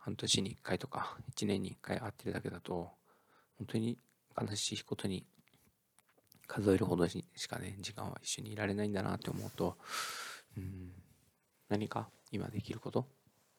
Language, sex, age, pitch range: Japanese, male, 20-39, 95-120 Hz